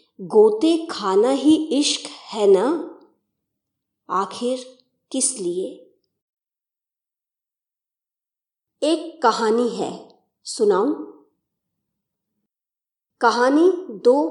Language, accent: Hindi, native